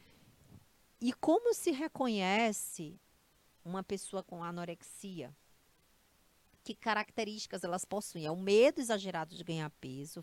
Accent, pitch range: Brazilian, 170-225 Hz